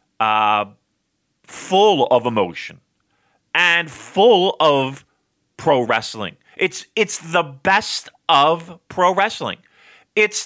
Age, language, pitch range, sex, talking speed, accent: 40-59, English, 125-195 Hz, male, 100 wpm, American